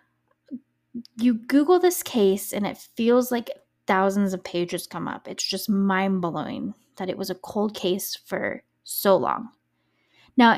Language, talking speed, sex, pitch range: English, 150 wpm, female, 185-250 Hz